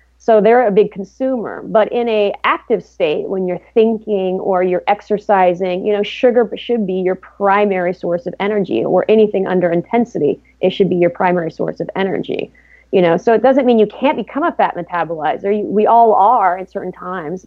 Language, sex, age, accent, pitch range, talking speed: English, female, 30-49, American, 180-210 Hz, 195 wpm